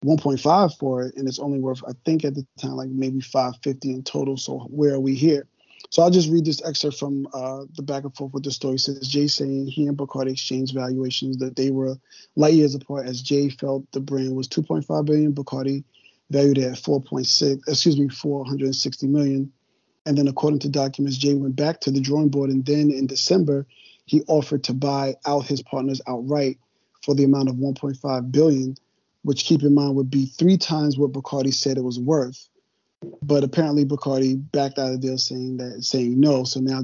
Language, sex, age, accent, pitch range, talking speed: English, male, 30-49, American, 130-145 Hz, 225 wpm